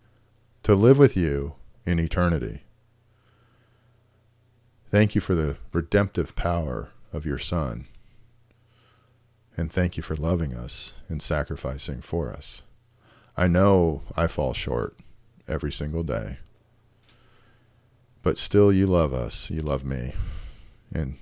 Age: 50-69